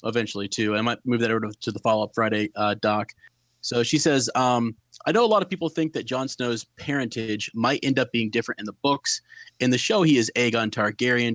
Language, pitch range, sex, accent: English, 115-130 Hz, male, American